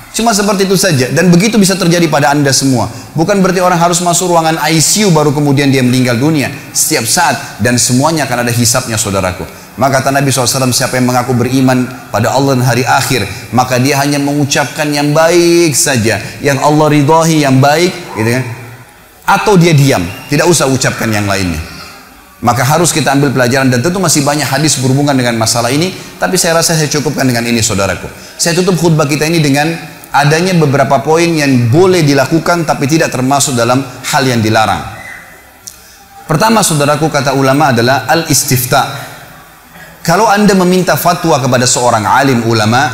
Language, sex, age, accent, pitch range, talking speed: Indonesian, male, 30-49, native, 125-160 Hz, 170 wpm